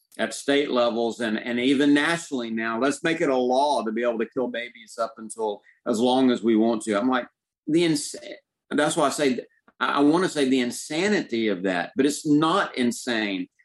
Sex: male